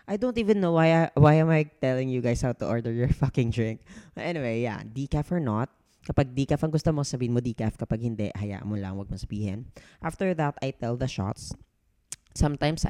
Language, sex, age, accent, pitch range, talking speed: English, female, 20-39, Filipino, 110-145 Hz, 220 wpm